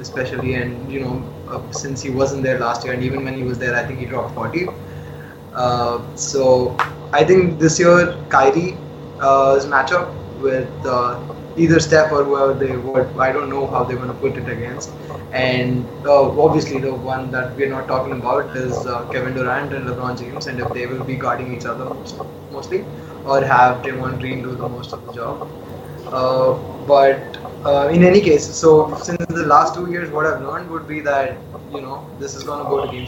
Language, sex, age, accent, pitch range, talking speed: English, male, 20-39, Indian, 125-145 Hz, 205 wpm